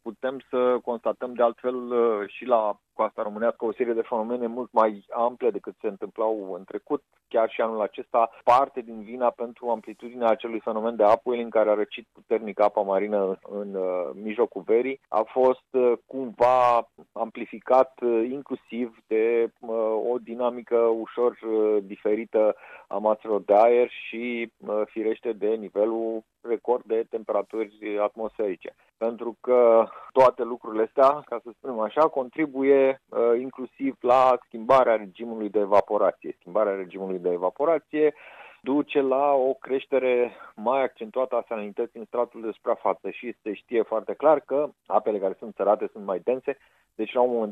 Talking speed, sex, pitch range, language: 145 wpm, male, 110-125 Hz, Romanian